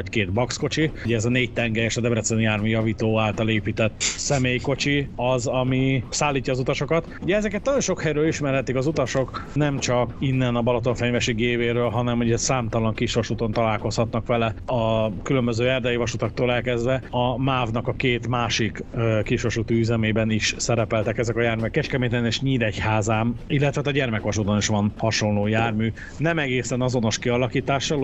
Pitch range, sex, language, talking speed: 110-130 Hz, male, Hungarian, 155 wpm